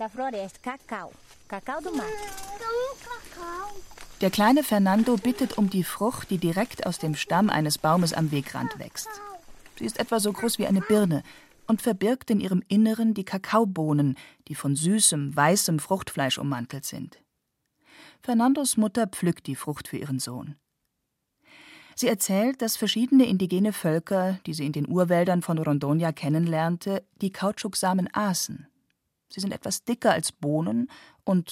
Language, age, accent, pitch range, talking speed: German, 40-59, German, 160-225 Hz, 135 wpm